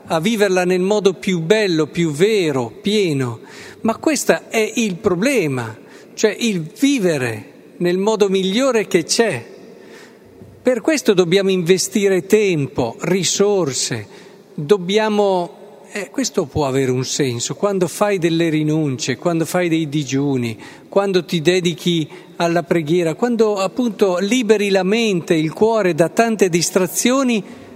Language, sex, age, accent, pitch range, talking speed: Italian, male, 50-69, native, 170-215 Hz, 130 wpm